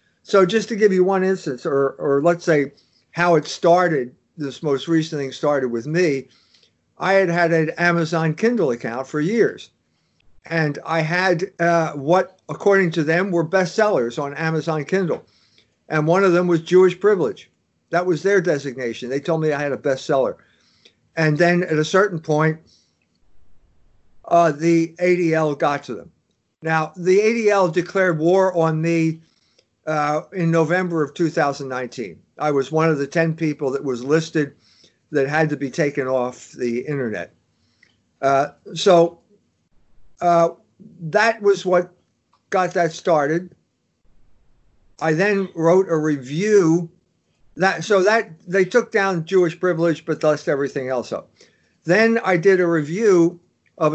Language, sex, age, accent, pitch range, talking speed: English, male, 50-69, American, 150-185 Hz, 150 wpm